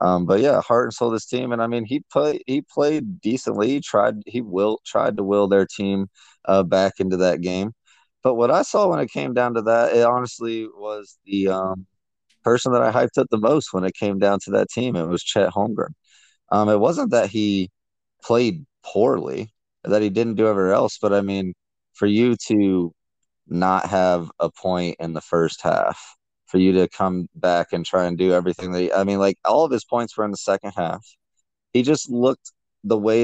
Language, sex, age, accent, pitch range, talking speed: English, male, 20-39, American, 90-115 Hz, 210 wpm